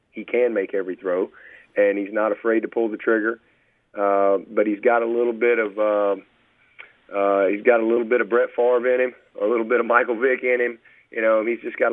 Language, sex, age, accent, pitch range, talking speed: English, male, 40-59, American, 105-125 Hz, 230 wpm